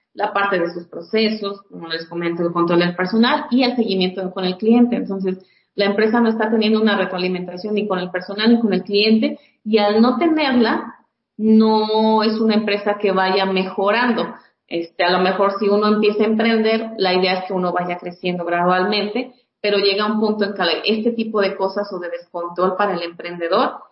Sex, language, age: female, Spanish, 30-49